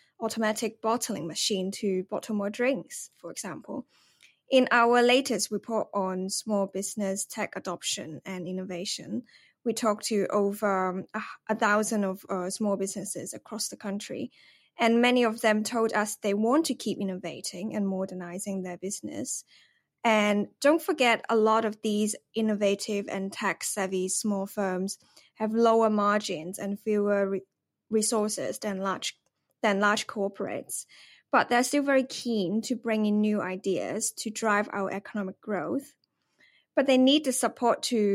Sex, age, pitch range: female, 20-39, 195-225 Hz